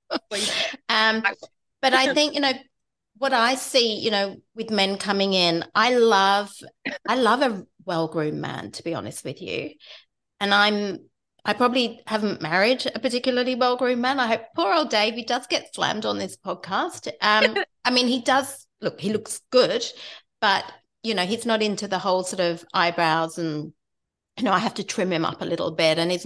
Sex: female